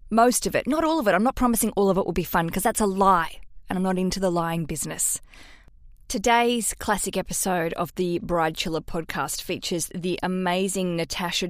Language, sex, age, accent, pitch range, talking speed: English, female, 20-39, Australian, 180-230 Hz, 205 wpm